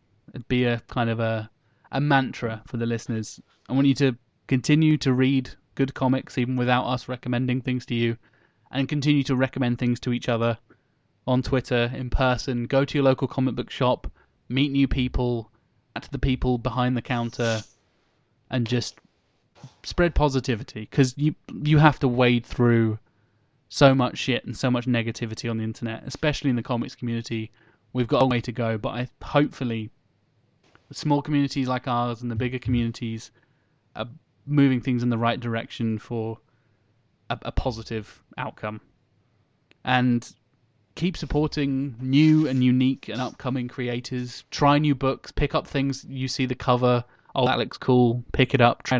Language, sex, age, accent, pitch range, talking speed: English, male, 20-39, British, 115-130 Hz, 165 wpm